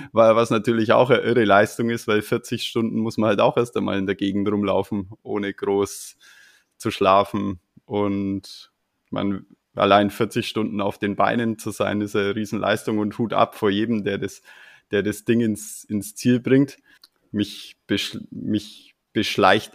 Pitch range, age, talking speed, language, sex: 100-110 Hz, 20-39, 165 wpm, German, male